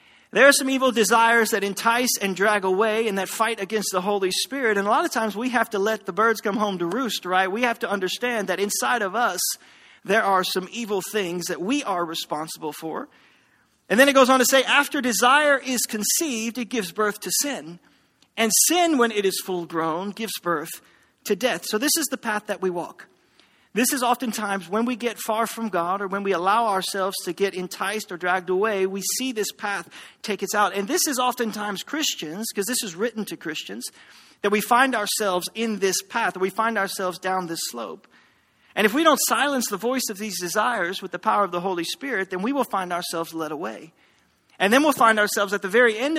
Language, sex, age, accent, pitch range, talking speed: English, male, 40-59, American, 190-240 Hz, 220 wpm